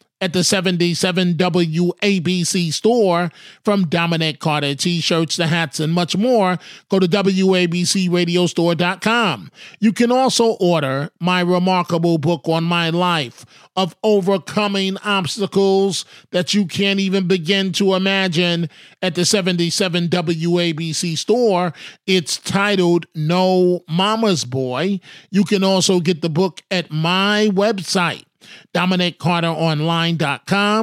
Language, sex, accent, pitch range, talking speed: English, male, American, 165-195 Hz, 110 wpm